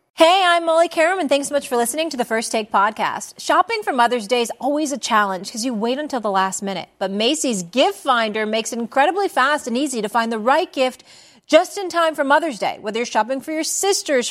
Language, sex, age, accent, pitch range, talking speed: English, female, 40-59, American, 230-315 Hz, 240 wpm